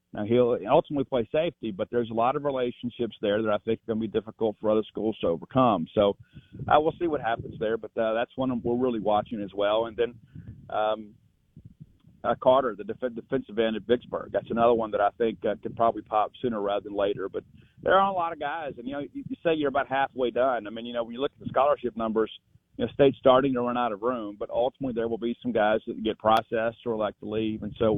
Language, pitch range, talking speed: English, 110-130 Hz, 255 wpm